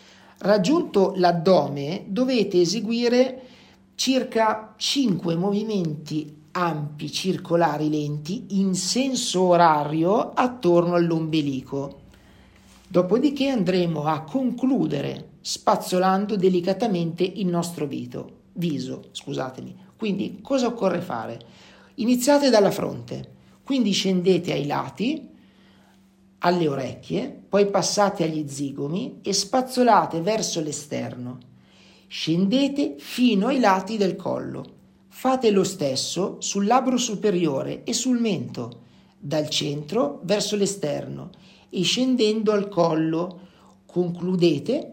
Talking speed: 90 wpm